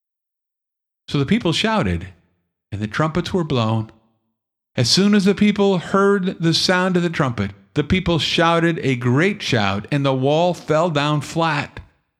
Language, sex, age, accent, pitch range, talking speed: English, male, 50-69, American, 110-155 Hz, 155 wpm